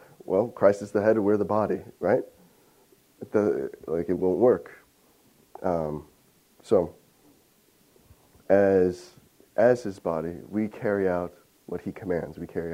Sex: male